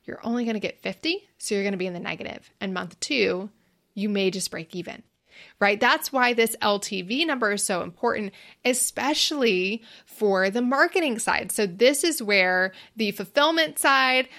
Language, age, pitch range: English, 20-39, 195-265 Hz